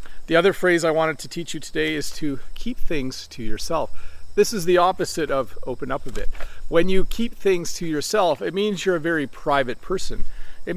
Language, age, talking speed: English, 40-59, 210 wpm